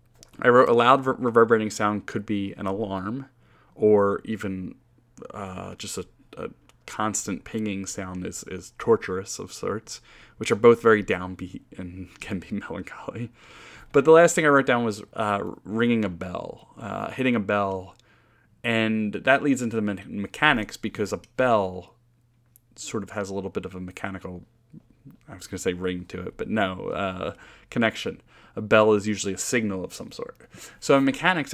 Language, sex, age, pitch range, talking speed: English, male, 30-49, 100-120 Hz, 170 wpm